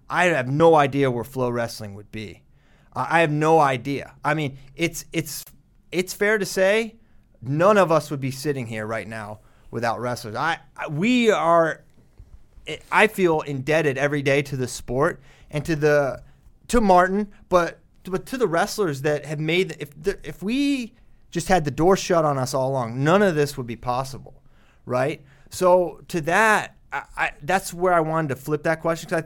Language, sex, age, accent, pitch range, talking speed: English, male, 30-49, American, 125-165 Hz, 195 wpm